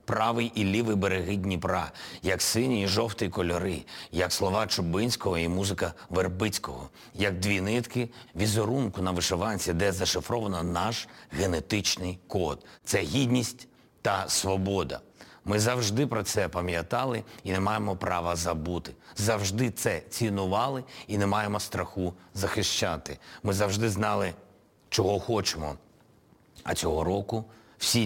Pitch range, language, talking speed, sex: 95-115 Hz, Ukrainian, 125 wpm, male